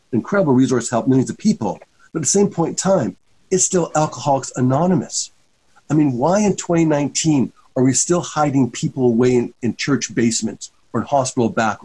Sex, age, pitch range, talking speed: male, 50-69, 125-155 Hz, 185 wpm